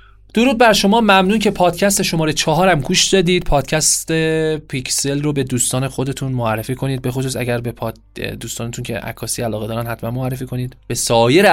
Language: Arabic